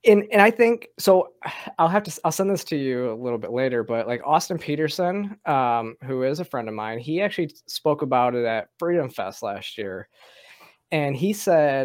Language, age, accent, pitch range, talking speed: English, 20-39, American, 120-165 Hz, 210 wpm